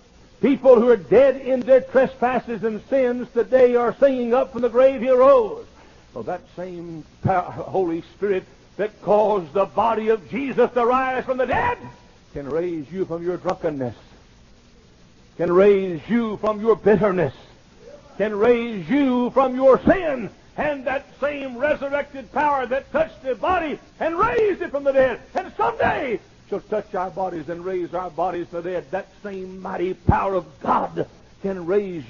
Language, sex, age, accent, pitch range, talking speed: English, male, 60-79, American, 175-250 Hz, 165 wpm